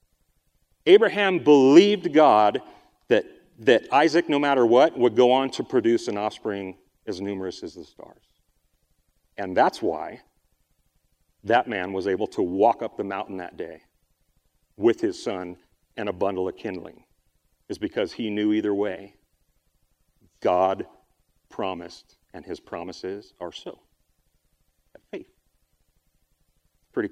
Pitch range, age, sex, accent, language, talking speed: 105-140 Hz, 40-59, male, American, English, 130 wpm